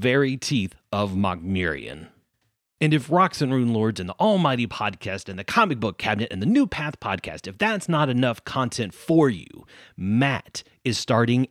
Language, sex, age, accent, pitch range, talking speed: English, male, 30-49, American, 100-135 Hz, 175 wpm